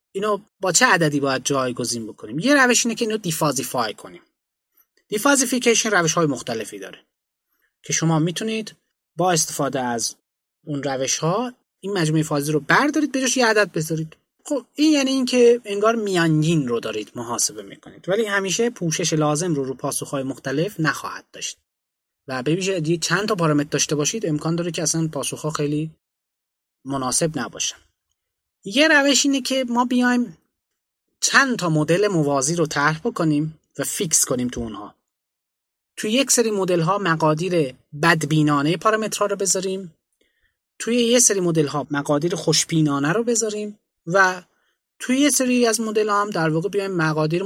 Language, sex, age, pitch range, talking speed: Persian, male, 20-39, 145-215 Hz, 155 wpm